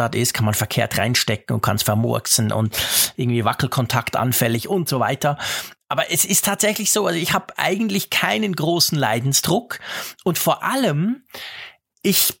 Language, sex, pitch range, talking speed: German, male, 130-180 Hz, 155 wpm